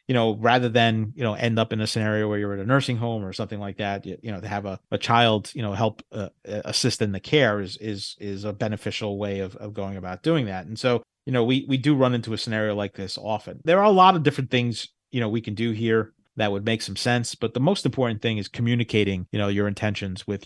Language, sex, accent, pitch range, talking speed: English, male, American, 100-115 Hz, 275 wpm